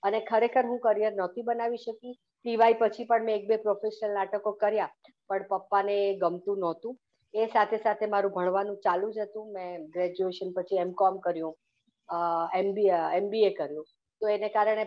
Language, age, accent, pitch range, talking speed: Gujarati, 50-69, native, 190-235 Hz, 40 wpm